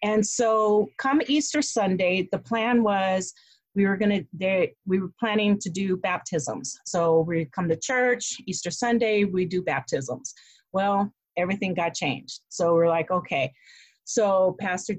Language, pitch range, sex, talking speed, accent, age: English, 185-235 Hz, female, 150 wpm, American, 40-59